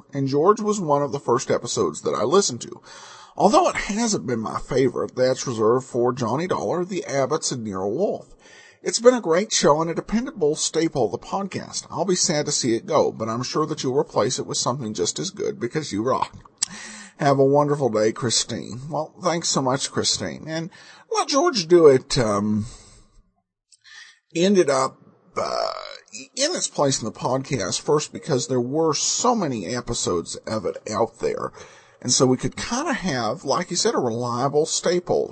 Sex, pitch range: male, 120-180 Hz